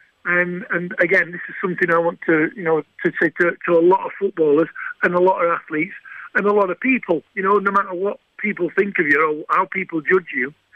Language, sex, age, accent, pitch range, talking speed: English, male, 50-69, British, 175-200 Hz, 240 wpm